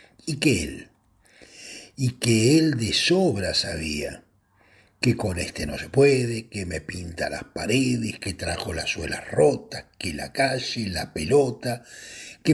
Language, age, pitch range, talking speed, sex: Spanish, 60-79, 95-135 Hz, 150 wpm, male